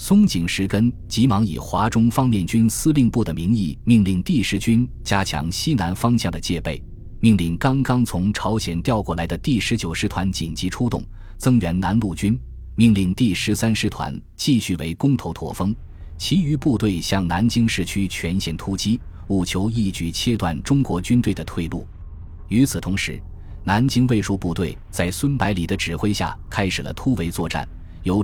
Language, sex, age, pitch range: Chinese, male, 20-39, 85-115 Hz